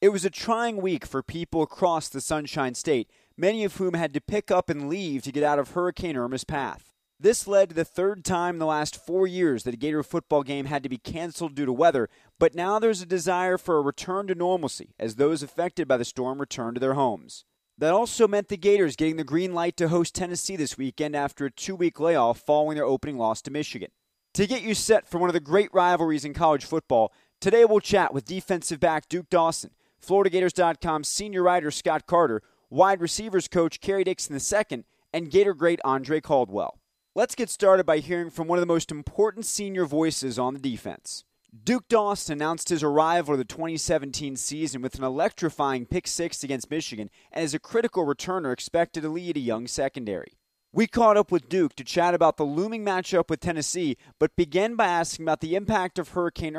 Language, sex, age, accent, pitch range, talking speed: English, male, 30-49, American, 145-185 Hz, 210 wpm